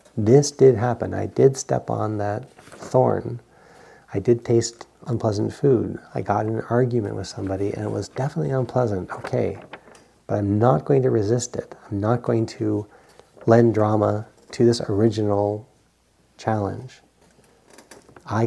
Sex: male